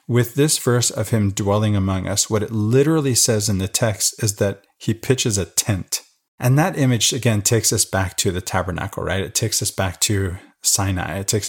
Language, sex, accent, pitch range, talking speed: English, male, American, 95-115 Hz, 210 wpm